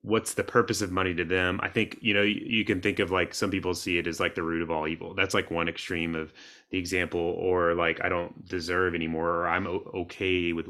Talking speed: 250 wpm